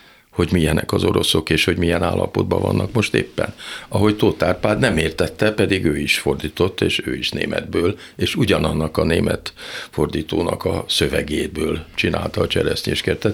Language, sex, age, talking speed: Hungarian, male, 60-79, 155 wpm